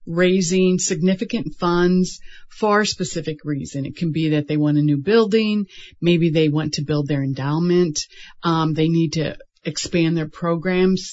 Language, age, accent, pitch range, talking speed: English, 40-59, American, 160-195 Hz, 160 wpm